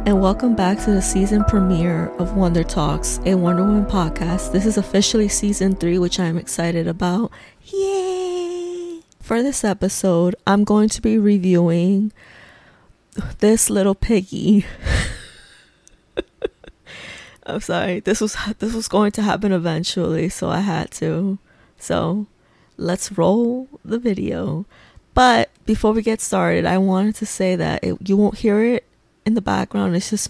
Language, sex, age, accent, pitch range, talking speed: English, female, 20-39, American, 180-210 Hz, 145 wpm